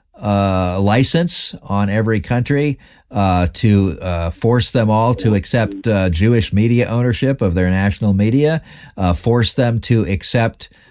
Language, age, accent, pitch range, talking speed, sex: English, 50-69, American, 90-115 Hz, 150 wpm, male